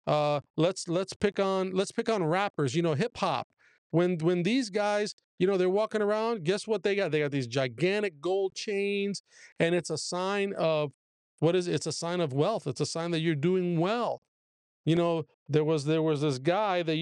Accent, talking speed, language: American, 210 wpm, English